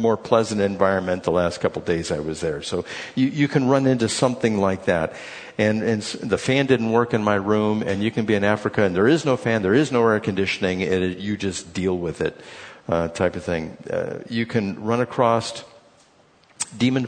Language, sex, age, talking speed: English, male, 50-69, 215 wpm